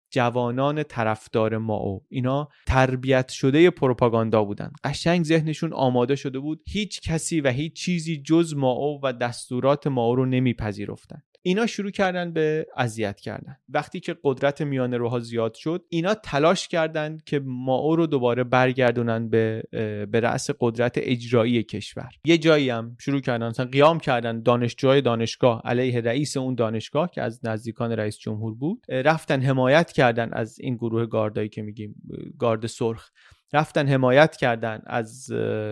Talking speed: 155 wpm